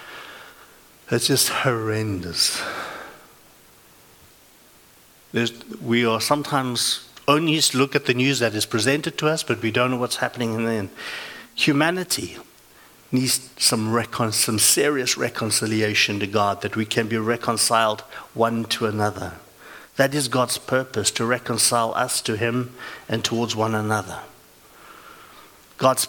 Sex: male